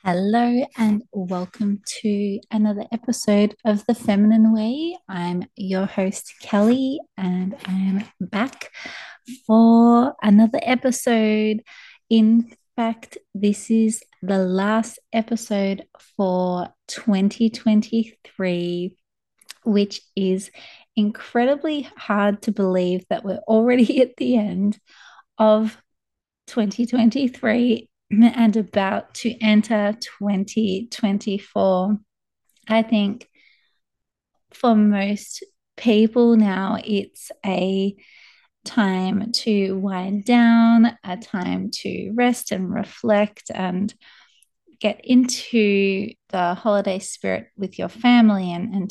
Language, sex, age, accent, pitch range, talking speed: English, female, 30-49, Australian, 195-230 Hz, 95 wpm